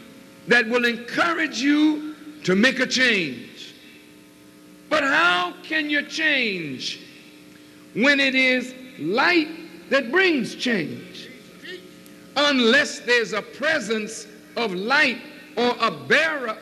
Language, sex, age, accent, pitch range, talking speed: French, male, 60-79, American, 230-275 Hz, 105 wpm